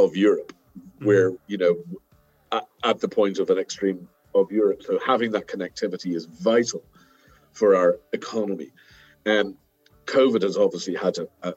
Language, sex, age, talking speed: English, male, 50-69, 145 wpm